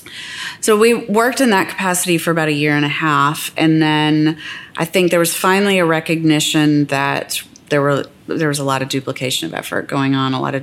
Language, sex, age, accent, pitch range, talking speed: English, female, 30-49, American, 140-160 Hz, 215 wpm